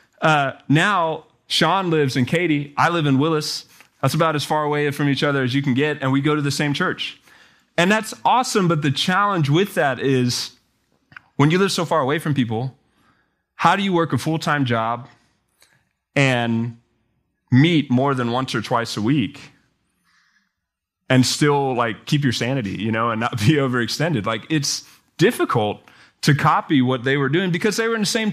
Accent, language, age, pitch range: American, English, 20-39, 130-165 Hz